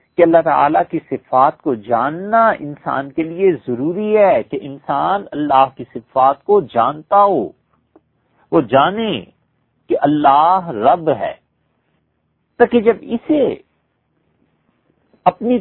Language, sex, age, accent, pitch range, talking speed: English, male, 50-69, Indian, 125-210 Hz, 115 wpm